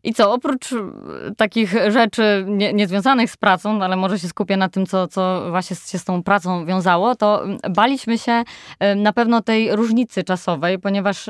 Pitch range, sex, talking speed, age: 190-235 Hz, female, 180 wpm, 20-39